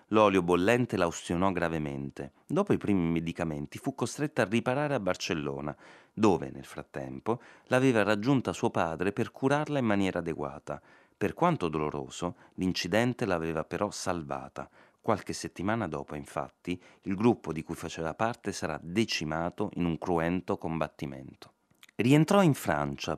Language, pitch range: Italian, 80-115 Hz